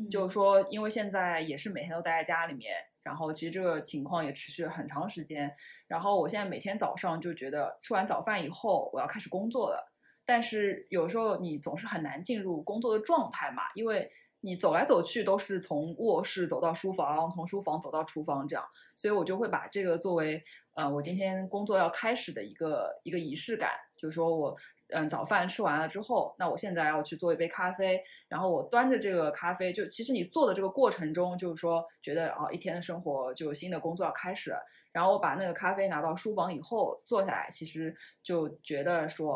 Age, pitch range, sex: 20-39, 160-200 Hz, female